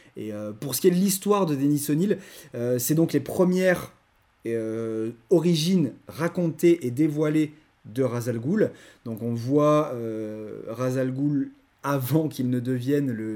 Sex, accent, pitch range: male, French, 115-150 Hz